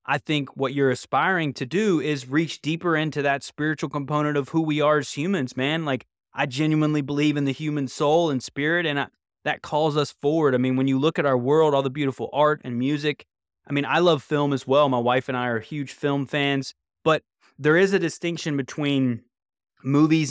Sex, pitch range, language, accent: male, 130-150 Hz, English, American